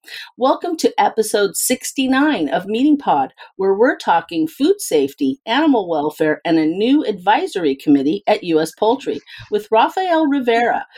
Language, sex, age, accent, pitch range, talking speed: English, female, 40-59, American, 175-285 Hz, 135 wpm